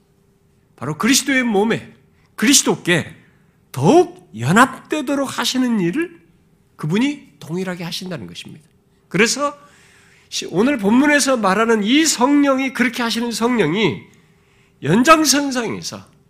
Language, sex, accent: Korean, male, native